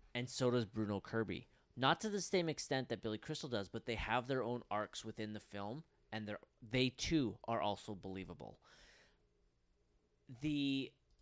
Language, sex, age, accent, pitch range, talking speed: English, male, 30-49, American, 105-135 Hz, 160 wpm